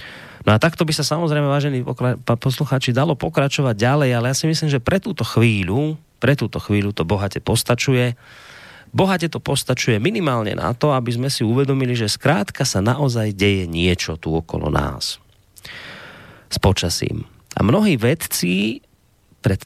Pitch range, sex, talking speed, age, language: 105-145 Hz, male, 155 wpm, 30-49, Slovak